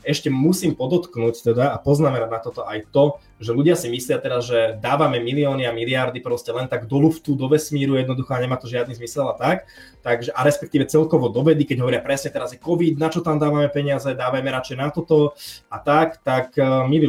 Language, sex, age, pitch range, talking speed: Slovak, male, 20-39, 120-150 Hz, 200 wpm